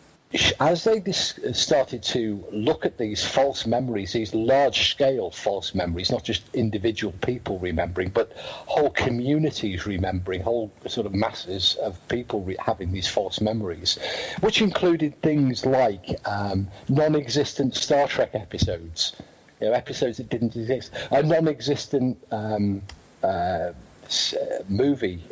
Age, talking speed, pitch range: 50-69, 125 wpm, 100-140 Hz